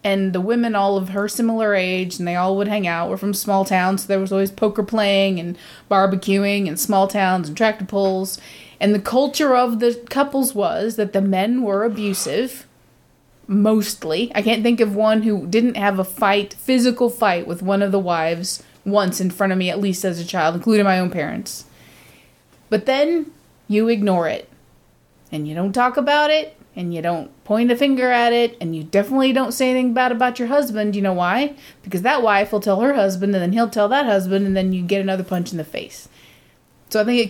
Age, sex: 20-39, female